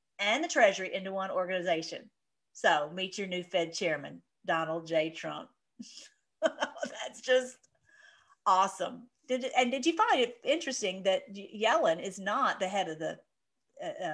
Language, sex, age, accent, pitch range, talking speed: English, female, 50-69, American, 180-245 Hz, 140 wpm